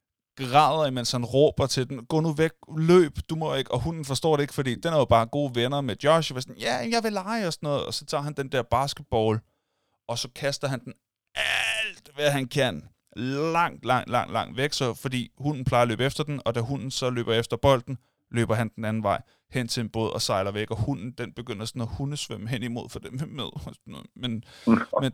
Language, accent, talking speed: Danish, native, 235 wpm